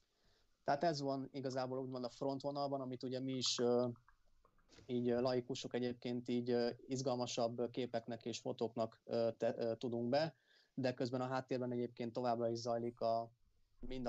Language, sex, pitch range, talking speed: Hungarian, male, 115-125 Hz, 130 wpm